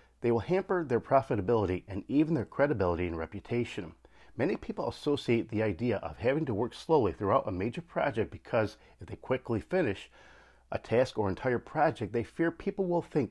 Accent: American